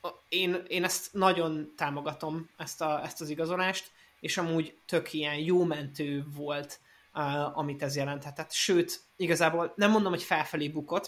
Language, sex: Hungarian, male